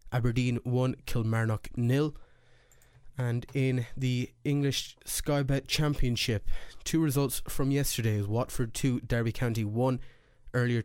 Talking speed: 110 wpm